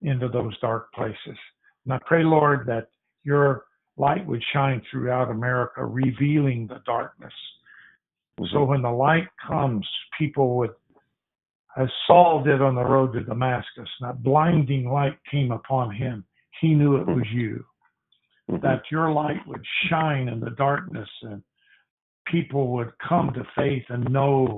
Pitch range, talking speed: 120-140 Hz, 145 wpm